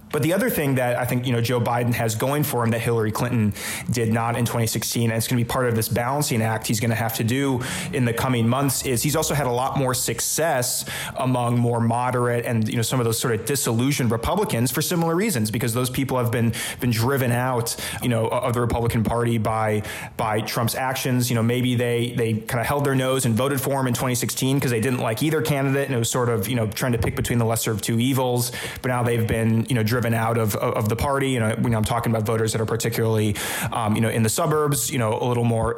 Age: 20-39